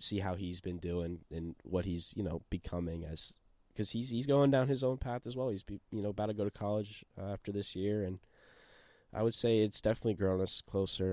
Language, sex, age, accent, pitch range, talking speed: English, male, 10-29, American, 90-105 Hz, 225 wpm